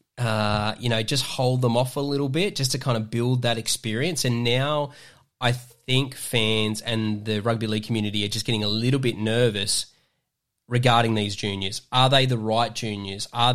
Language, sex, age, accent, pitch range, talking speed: English, male, 10-29, Australian, 110-130 Hz, 190 wpm